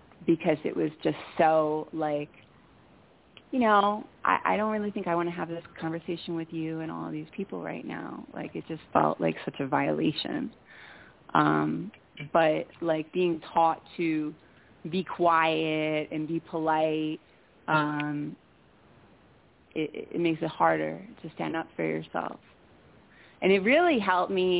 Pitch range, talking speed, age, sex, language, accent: 155-185 Hz, 155 wpm, 30-49, female, English, American